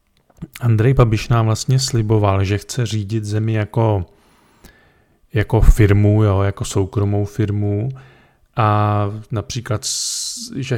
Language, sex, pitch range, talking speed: Czech, male, 100-120 Hz, 105 wpm